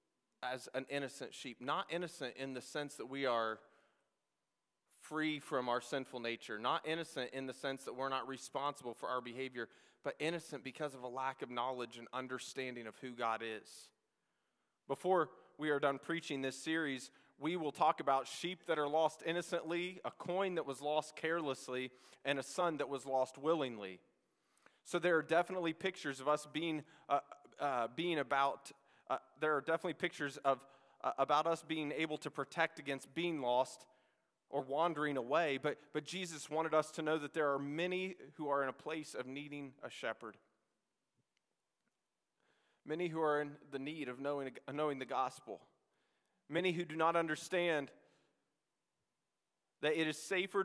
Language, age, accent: English, 30-49, American